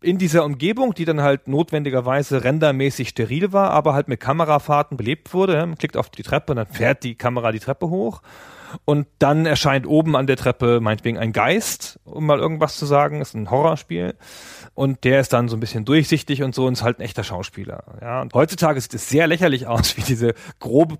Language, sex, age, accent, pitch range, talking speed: German, male, 40-59, German, 115-155 Hz, 215 wpm